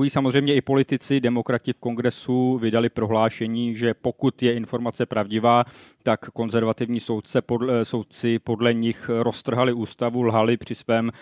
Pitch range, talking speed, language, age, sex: 110-120 Hz, 135 wpm, Czech, 30-49, male